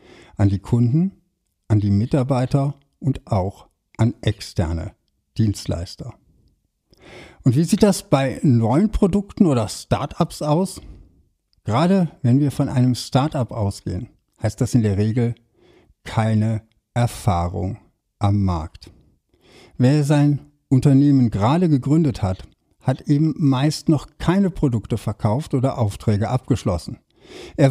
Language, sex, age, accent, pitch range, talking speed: German, male, 60-79, German, 105-150 Hz, 115 wpm